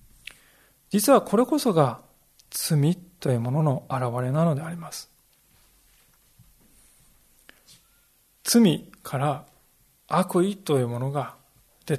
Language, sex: Japanese, male